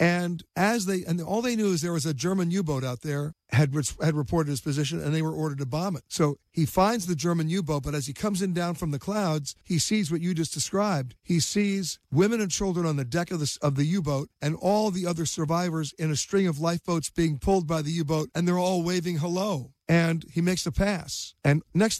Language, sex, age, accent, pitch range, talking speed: English, male, 50-69, American, 145-175 Hz, 240 wpm